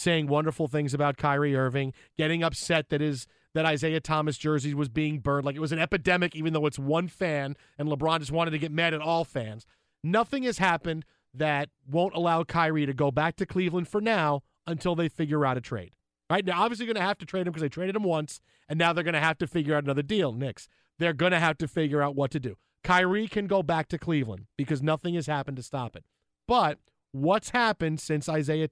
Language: English